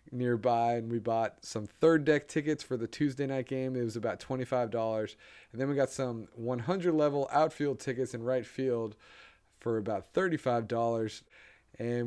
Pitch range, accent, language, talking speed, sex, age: 115-145 Hz, American, English, 175 wpm, male, 30-49